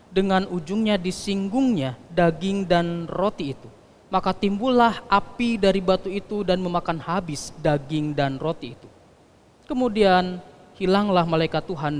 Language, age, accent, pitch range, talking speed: Indonesian, 20-39, native, 150-215 Hz, 120 wpm